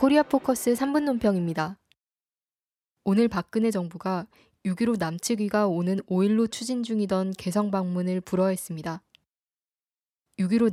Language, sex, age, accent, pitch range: Korean, female, 20-39, native, 180-225 Hz